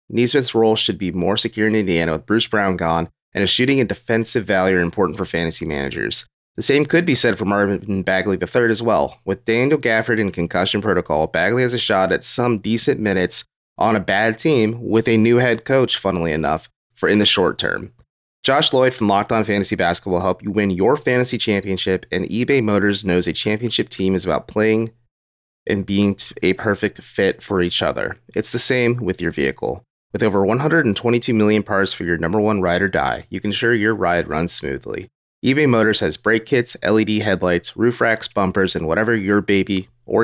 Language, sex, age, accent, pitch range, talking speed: English, male, 30-49, American, 95-115 Hz, 205 wpm